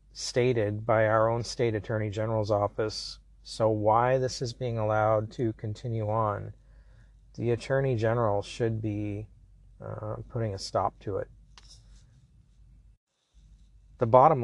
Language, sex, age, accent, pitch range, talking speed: English, male, 40-59, American, 105-120 Hz, 125 wpm